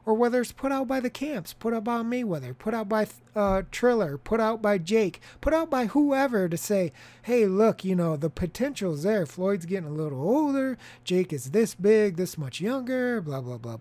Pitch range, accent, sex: 165-230 Hz, American, male